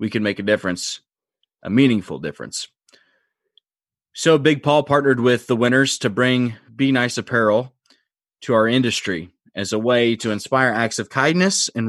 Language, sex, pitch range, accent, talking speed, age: English, male, 105-130 Hz, American, 160 wpm, 30-49